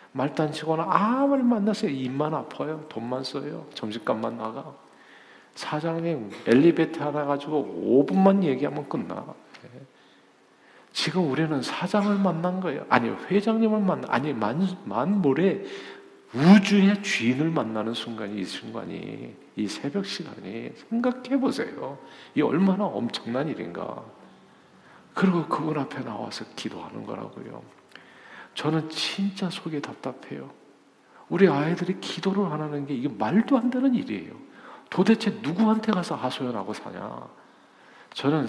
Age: 50-69